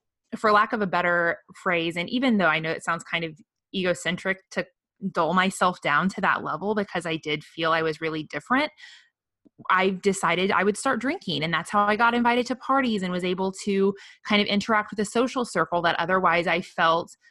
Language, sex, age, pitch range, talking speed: English, female, 20-39, 165-195 Hz, 210 wpm